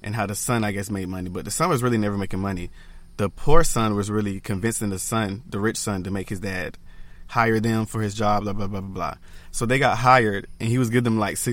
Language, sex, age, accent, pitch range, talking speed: English, male, 20-39, American, 95-120 Hz, 265 wpm